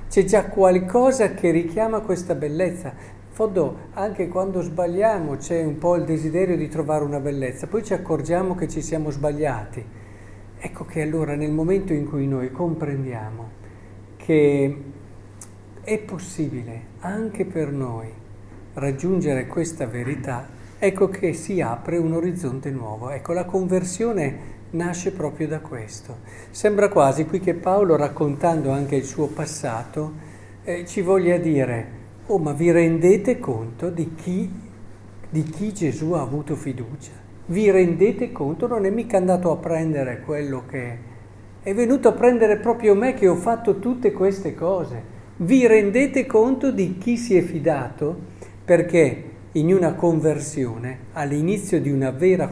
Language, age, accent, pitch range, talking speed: Italian, 50-69, native, 130-185 Hz, 145 wpm